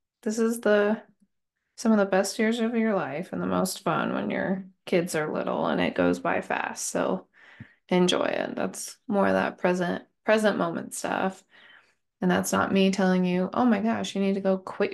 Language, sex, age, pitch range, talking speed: English, female, 20-39, 180-210 Hz, 200 wpm